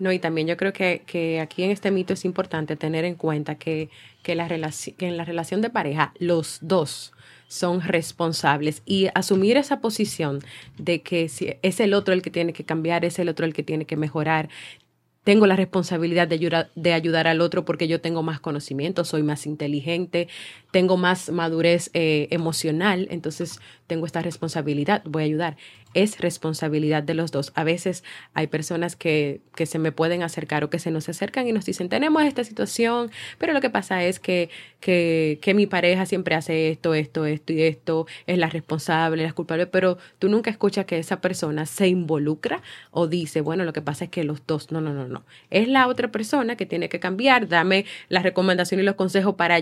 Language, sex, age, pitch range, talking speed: Spanish, female, 30-49, 160-185 Hz, 205 wpm